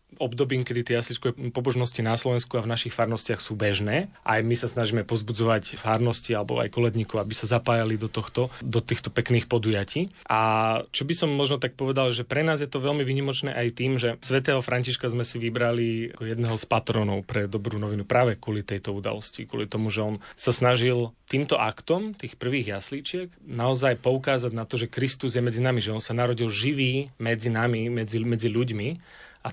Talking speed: 195 wpm